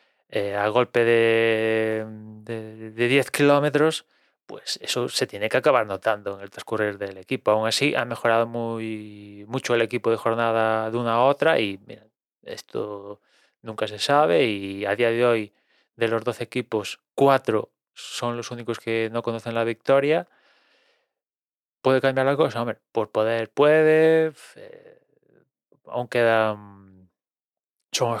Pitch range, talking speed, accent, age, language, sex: 110-120 Hz, 150 wpm, Spanish, 20-39, Spanish, male